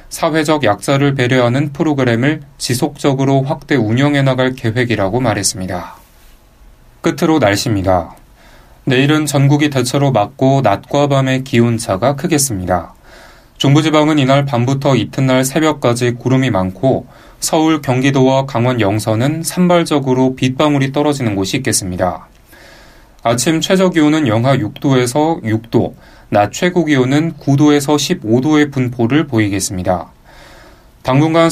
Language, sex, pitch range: Korean, male, 115-150 Hz